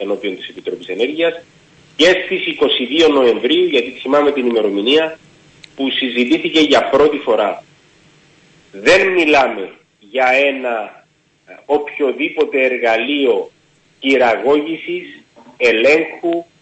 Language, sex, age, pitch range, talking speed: Greek, male, 40-59, 140-210 Hz, 90 wpm